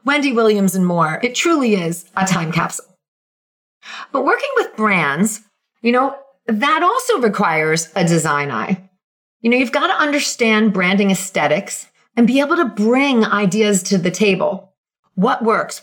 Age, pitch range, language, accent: 40-59, 190-270 Hz, English, American